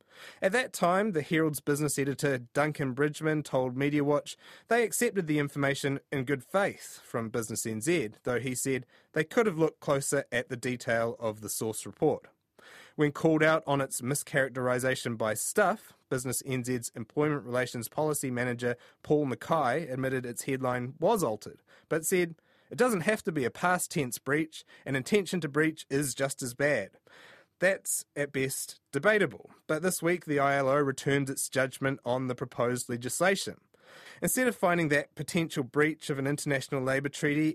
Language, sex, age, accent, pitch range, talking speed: English, male, 30-49, Australian, 125-155 Hz, 165 wpm